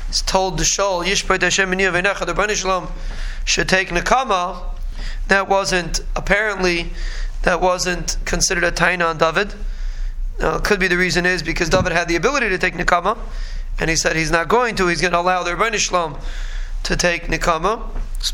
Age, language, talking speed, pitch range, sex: 20-39, English, 170 wpm, 165-190 Hz, male